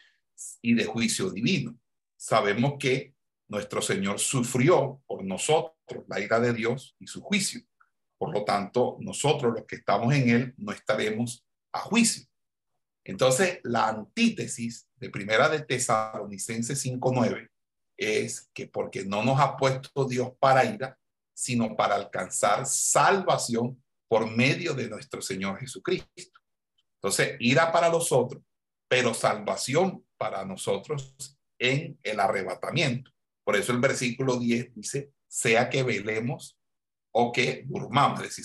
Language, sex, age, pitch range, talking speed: Spanish, male, 60-79, 115-140 Hz, 135 wpm